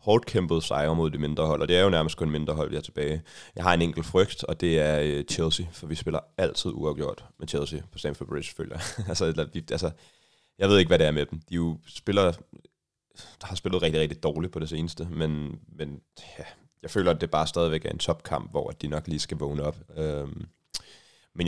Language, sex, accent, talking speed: Danish, male, native, 220 wpm